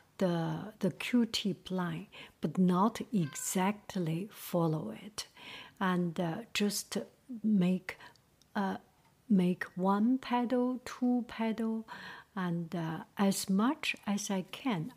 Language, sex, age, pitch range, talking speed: English, female, 60-79, 180-235 Hz, 110 wpm